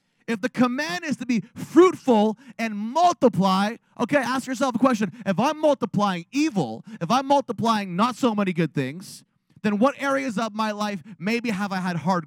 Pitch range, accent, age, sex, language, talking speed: 170-220 Hz, American, 30-49, male, English, 180 wpm